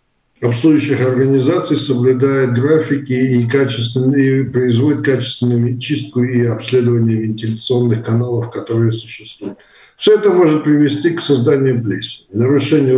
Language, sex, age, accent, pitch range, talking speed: Russian, male, 60-79, native, 125-150 Hz, 105 wpm